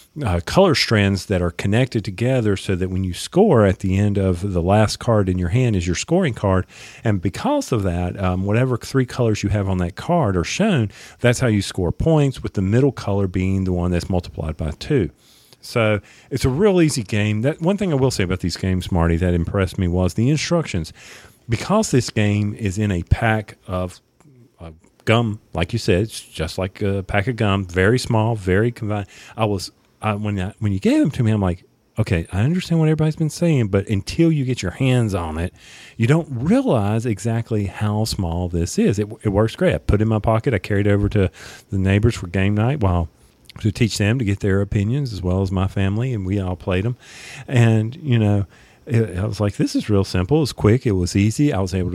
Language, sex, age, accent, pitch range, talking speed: English, male, 40-59, American, 95-120 Hz, 225 wpm